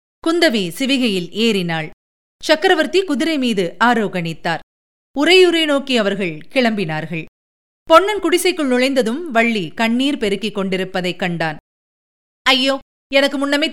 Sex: female